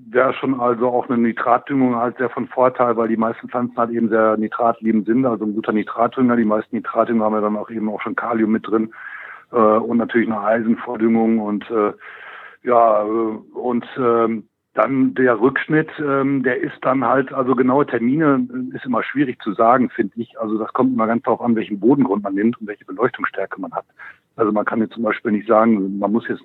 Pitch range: 110-130 Hz